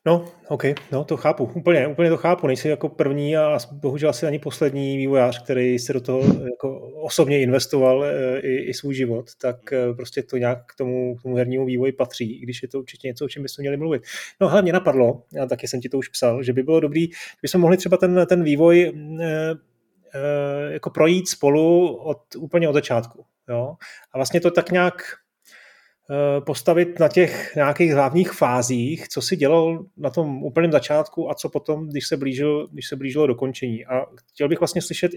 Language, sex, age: Czech, male, 30-49